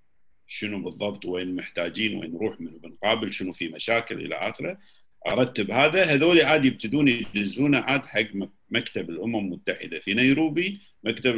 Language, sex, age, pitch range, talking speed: Arabic, male, 50-69, 105-145 Hz, 140 wpm